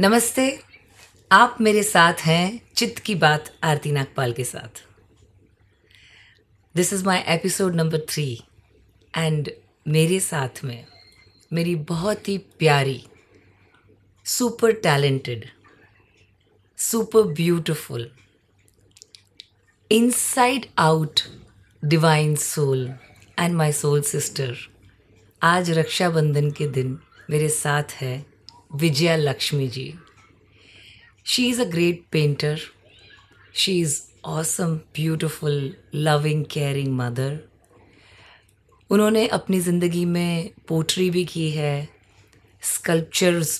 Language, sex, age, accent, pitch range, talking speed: Hindi, female, 30-49, native, 115-170 Hz, 95 wpm